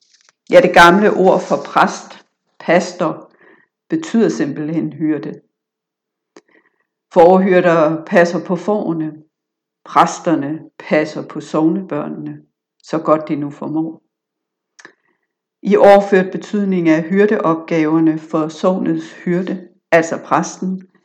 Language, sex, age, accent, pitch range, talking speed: Danish, female, 60-79, native, 155-190 Hz, 95 wpm